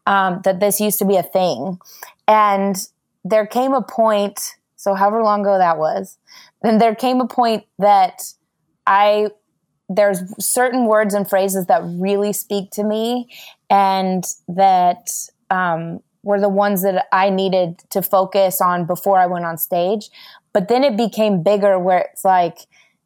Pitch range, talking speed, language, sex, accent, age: 185-210 Hz, 160 wpm, English, female, American, 20-39